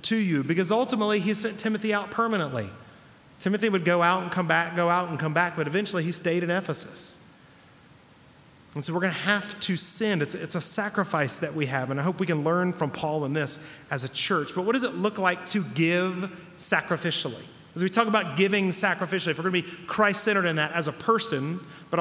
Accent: American